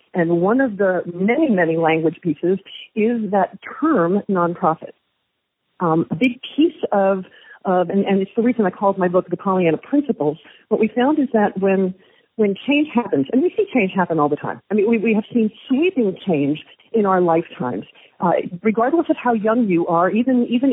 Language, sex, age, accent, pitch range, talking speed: English, female, 40-59, American, 175-235 Hz, 195 wpm